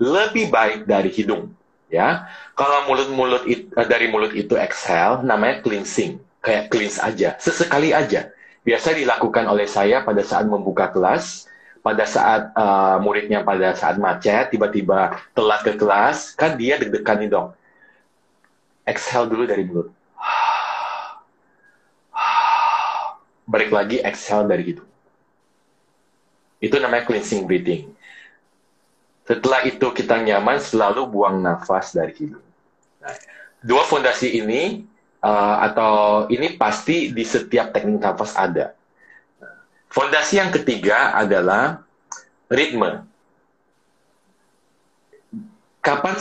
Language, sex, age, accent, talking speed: Indonesian, male, 30-49, native, 110 wpm